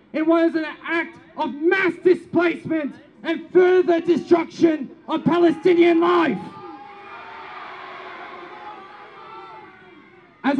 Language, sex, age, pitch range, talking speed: English, male, 20-39, 310-350 Hz, 80 wpm